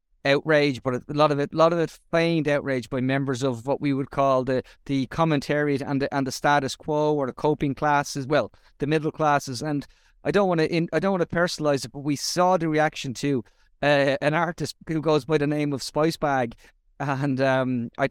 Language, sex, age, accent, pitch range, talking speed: English, male, 30-49, Irish, 135-155 Hz, 225 wpm